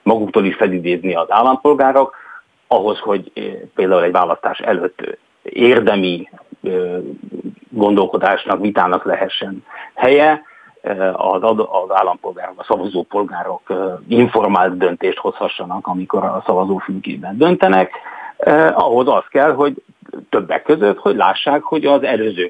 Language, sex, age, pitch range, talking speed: Hungarian, male, 50-69, 95-150 Hz, 100 wpm